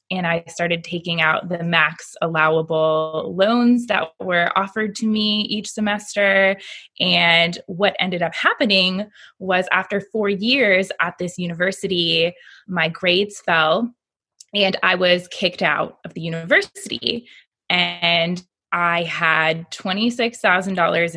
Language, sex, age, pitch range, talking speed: English, female, 20-39, 170-210 Hz, 120 wpm